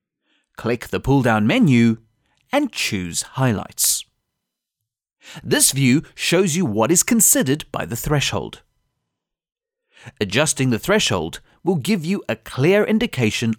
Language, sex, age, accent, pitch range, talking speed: English, male, 40-59, British, 110-160 Hz, 115 wpm